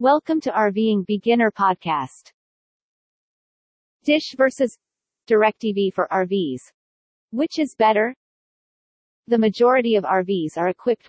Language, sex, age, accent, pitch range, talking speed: English, female, 40-59, American, 185-250 Hz, 105 wpm